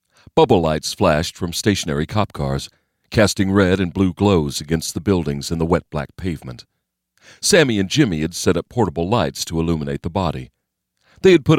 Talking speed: 180 wpm